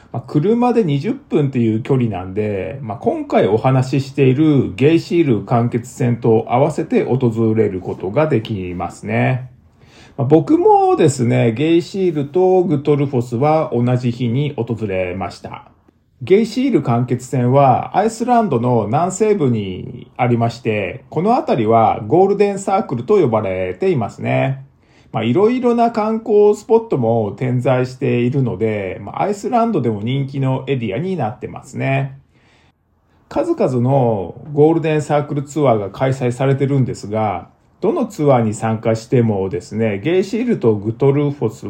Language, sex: Japanese, male